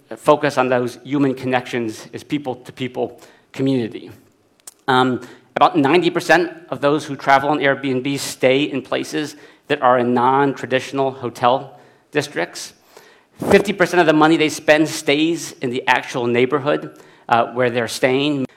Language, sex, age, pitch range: Chinese, male, 50-69, 125-150 Hz